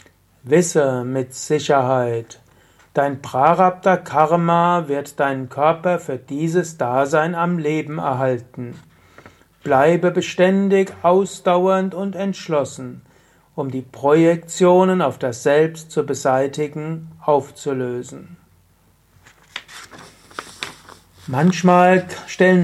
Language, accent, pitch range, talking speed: German, German, 130-170 Hz, 80 wpm